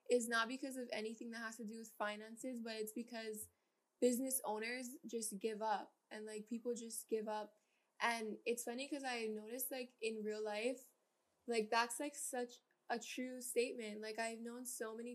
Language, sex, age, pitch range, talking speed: English, female, 10-29, 215-245 Hz, 185 wpm